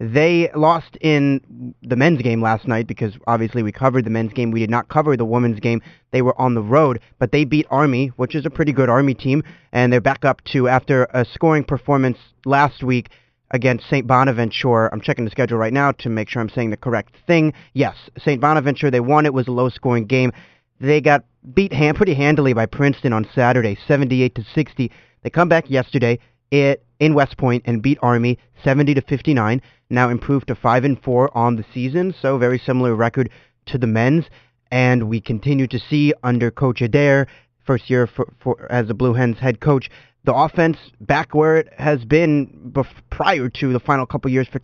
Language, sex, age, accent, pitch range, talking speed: English, male, 30-49, American, 125-150 Hz, 200 wpm